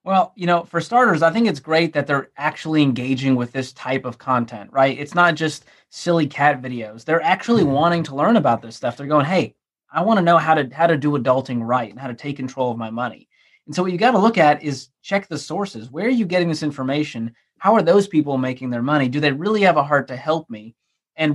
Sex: male